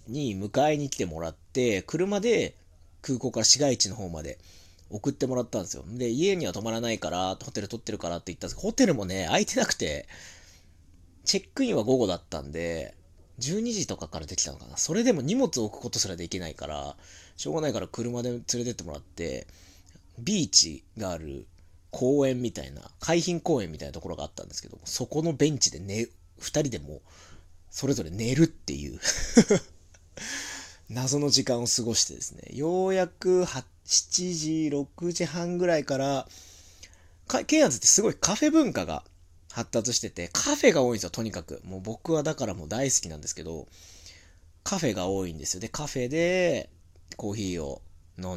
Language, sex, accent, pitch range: Japanese, male, native, 85-140 Hz